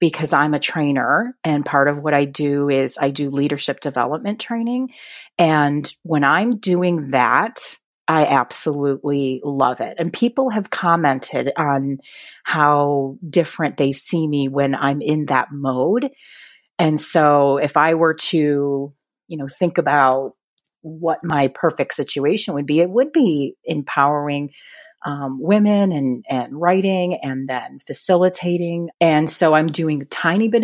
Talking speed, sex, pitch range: 145 wpm, female, 140-180 Hz